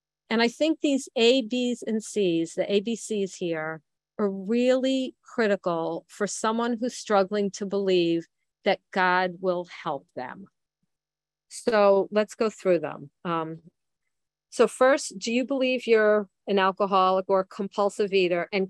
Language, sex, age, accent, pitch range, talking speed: English, female, 40-59, American, 180-225 Hz, 140 wpm